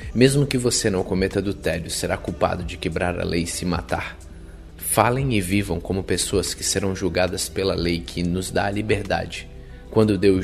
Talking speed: 190 wpm